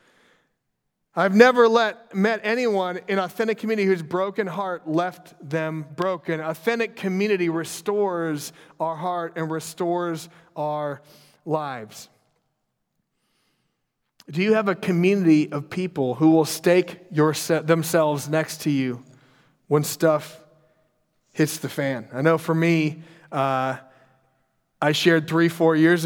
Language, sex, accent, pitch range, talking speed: English, male, American, 150-185 Hz, 120 wpm